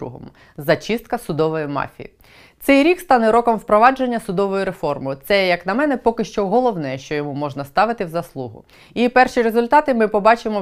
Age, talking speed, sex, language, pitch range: 20-39, 160 wpm, female, Ukrainian, 165-245 Hz